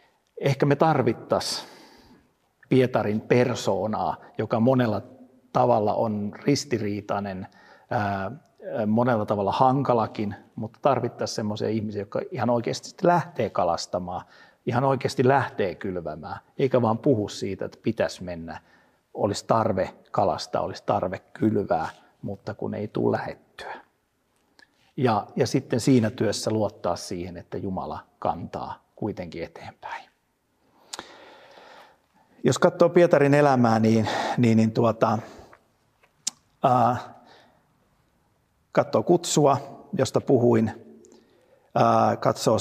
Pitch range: 110-135 Hz